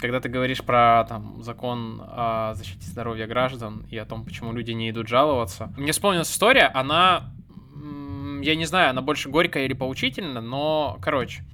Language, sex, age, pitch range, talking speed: Russian, male, 20-39, 115-145 Hz, 165 wpm